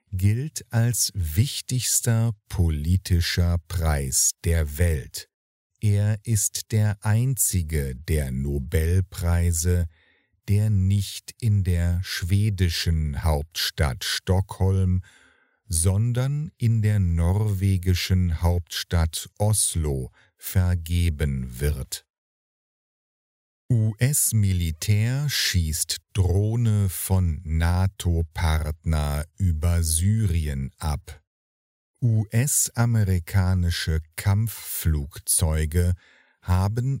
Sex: male